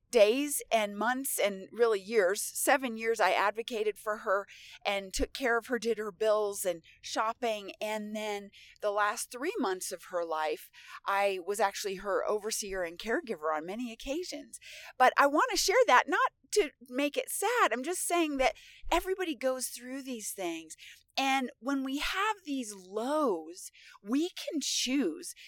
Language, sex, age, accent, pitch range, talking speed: English, female, 30-49, American, 205-285 Hz, 165 wpm